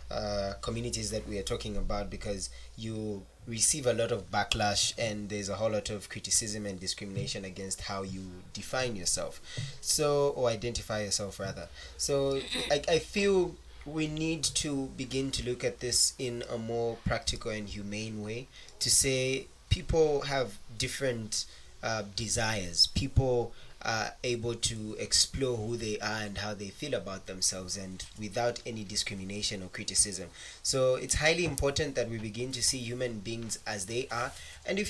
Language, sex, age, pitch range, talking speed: English, male, 20-39, 105-135 Hz, 165 wpm